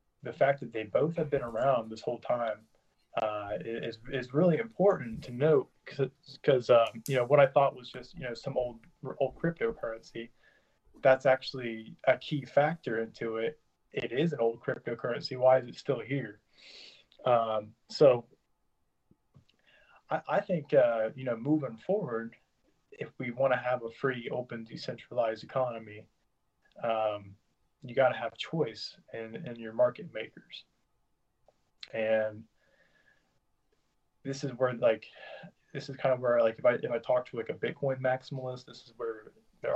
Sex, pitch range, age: male, 115-140 Hz, 20-39